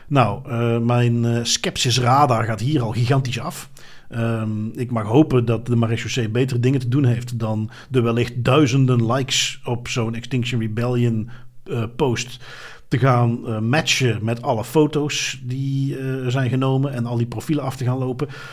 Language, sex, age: Dutch, male, 50-69